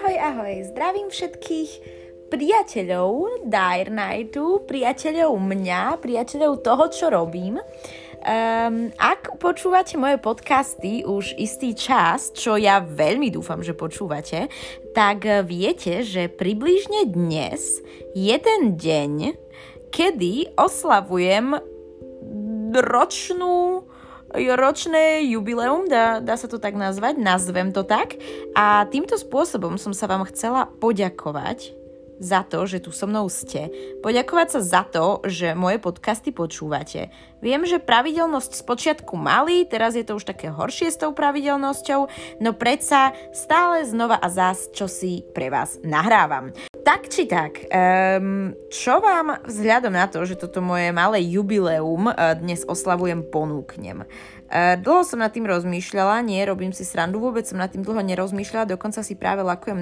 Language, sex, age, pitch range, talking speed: Slovak, female, 20-39, 180-260 Hz, 135 wpm